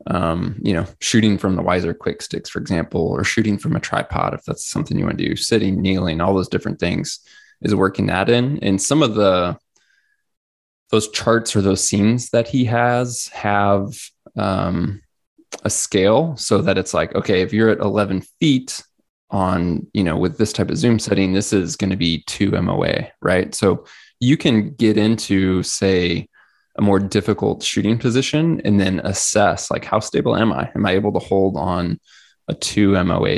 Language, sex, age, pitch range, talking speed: English, male, 20-39, 95-115 Hz, 185 wpm